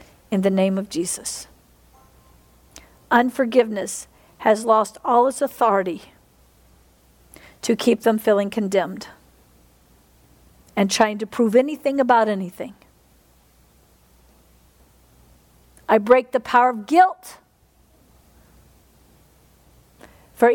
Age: 50-69